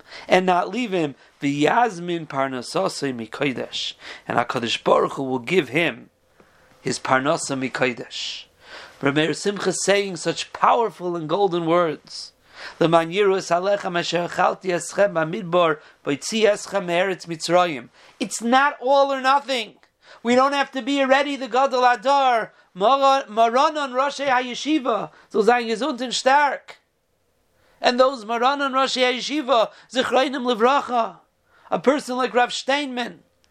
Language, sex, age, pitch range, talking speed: English, male, 40-59, 180-265 Hz, 125 wpm